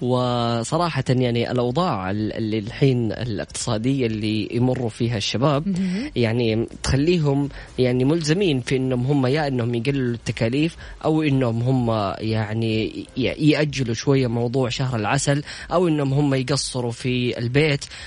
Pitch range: 125-165 Hz